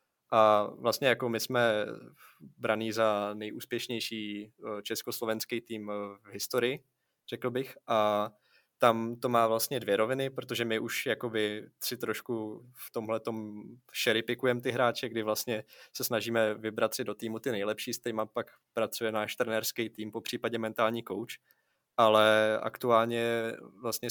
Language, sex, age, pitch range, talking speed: Czech, male, 20-39, 105-120 Hz, 135 wpm